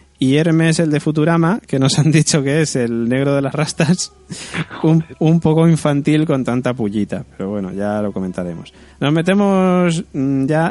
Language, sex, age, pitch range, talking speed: Spanish, male, 20-39, 120-150 Hz, 175 wpm